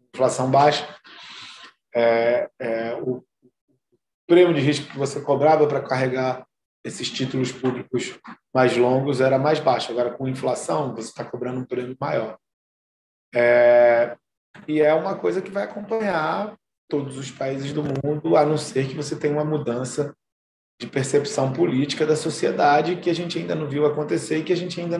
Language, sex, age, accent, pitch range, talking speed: Portuguese, male, 20-39, Brazilian, 125-150 Hz, 165 wpm